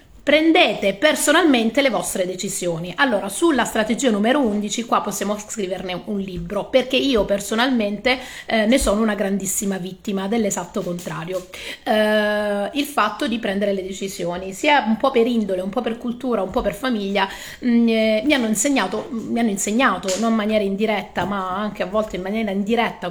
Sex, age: female, 30-49